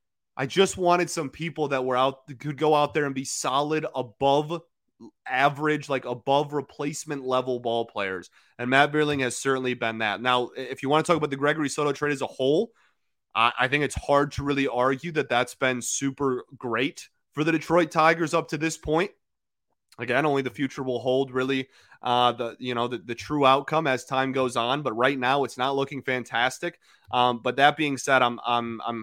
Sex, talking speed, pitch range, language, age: male, 205 wpm, 120-145 Hz, English, 20-39